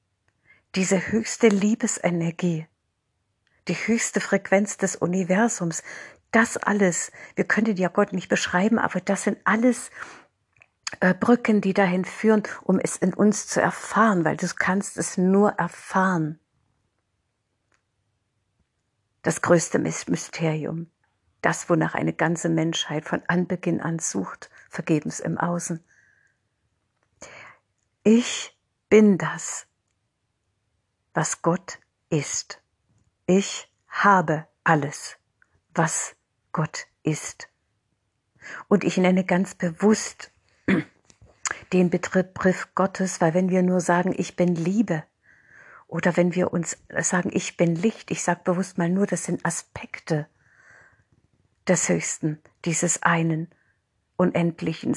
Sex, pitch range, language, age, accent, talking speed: female, 150-190 Hz, German, 50-69, German, 110 wpm